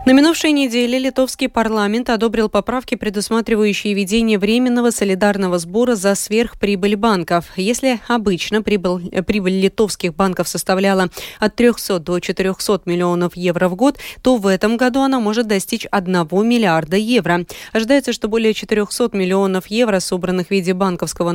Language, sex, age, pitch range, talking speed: Russian, female, 20-39, 185-245 Hz, 140 wpm